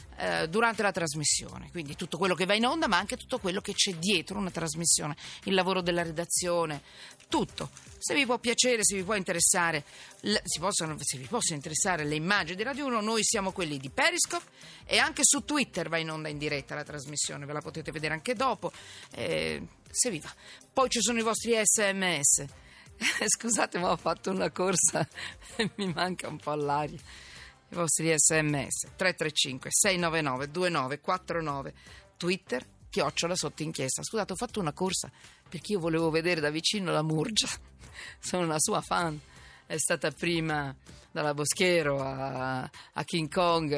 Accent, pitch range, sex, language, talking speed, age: native, 145-190 Hz, female, Italian, 165 wpm, 40-59